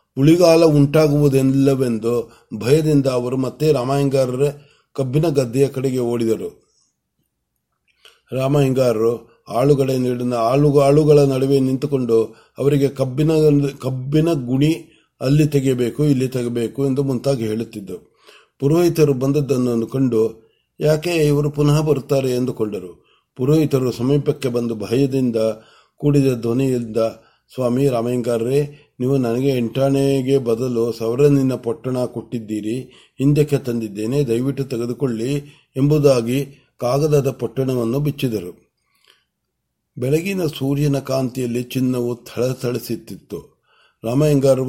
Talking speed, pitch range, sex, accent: 85 wpm, 120-140 Hz, male, native